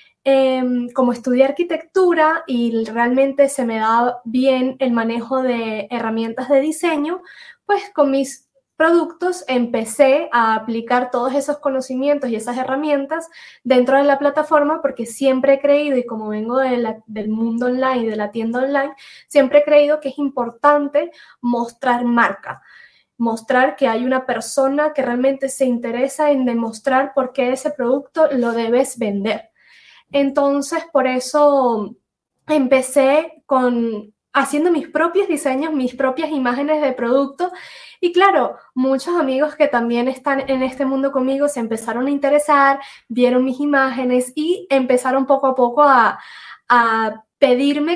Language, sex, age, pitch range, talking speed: Spanish, female, 10-29, 245-285 Hz, 145 wpm